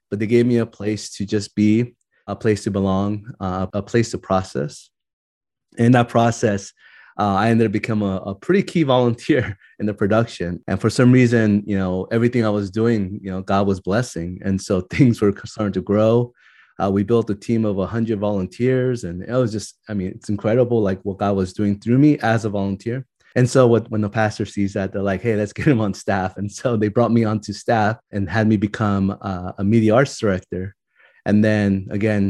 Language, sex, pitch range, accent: English, male, 95-115 Hz, American